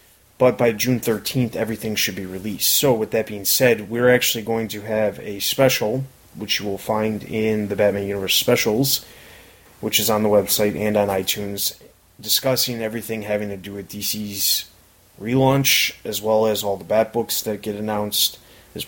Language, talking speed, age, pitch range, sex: English, 180 wpm, 20-39, 100-115 Hz, male